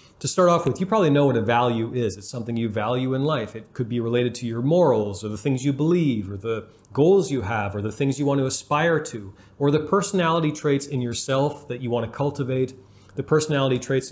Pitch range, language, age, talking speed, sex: 120-155 Hz, English, 30-49, 240 wpm, male